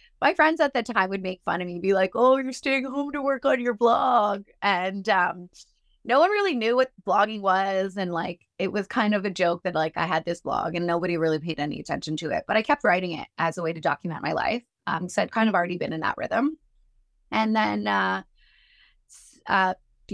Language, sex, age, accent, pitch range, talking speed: English, female, 20-39, American, 165-230 Hz, 235 wpm